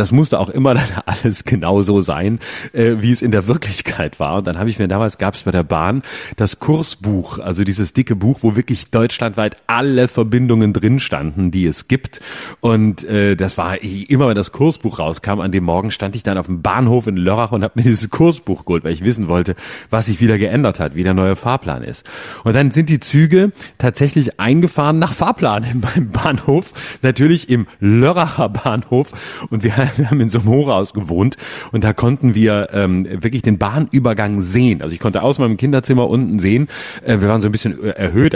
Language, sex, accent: German, male, German